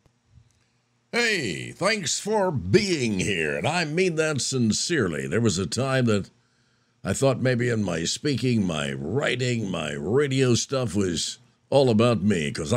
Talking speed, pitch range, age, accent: 145 wpm, 105-125 Hz, 60-79, American